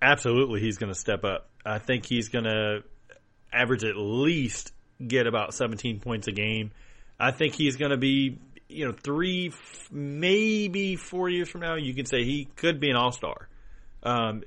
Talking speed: 180 wpm